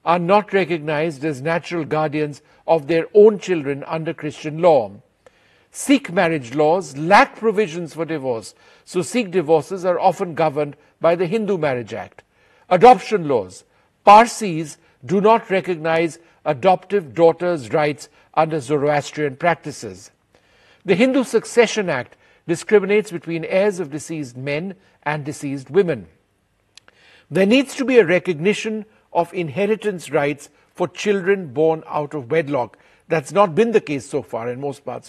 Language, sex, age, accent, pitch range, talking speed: English, male, 50-69, Indian, 150-200 Hz, 140 wpm